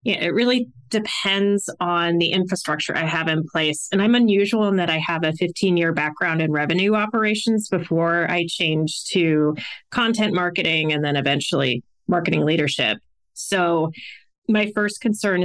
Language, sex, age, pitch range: English, female, 20-39, 165-200 Hz